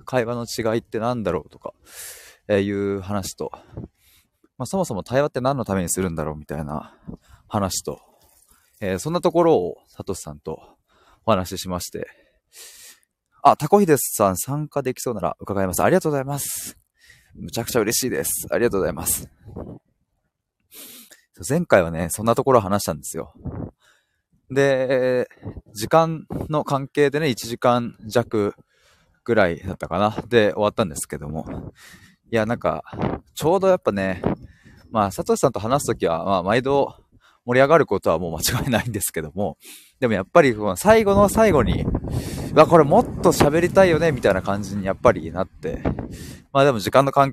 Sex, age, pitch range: male, 20-39, 95-145 Hz